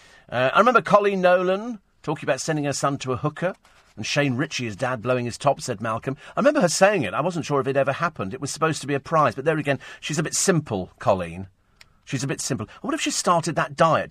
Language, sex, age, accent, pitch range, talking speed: English, male, 40-59, British, 105-150 Hz, 255 wpm